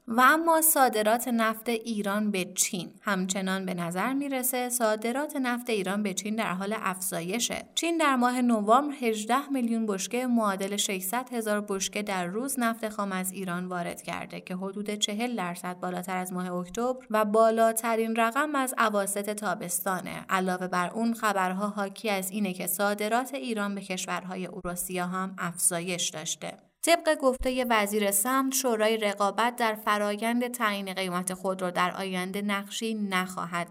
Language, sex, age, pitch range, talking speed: Persian, female, 30-49, 185-230 Hz, 150 wpm